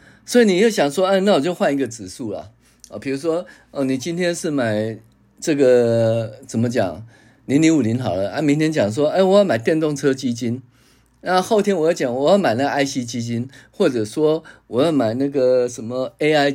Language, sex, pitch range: Chinese, male, 115-180 Hz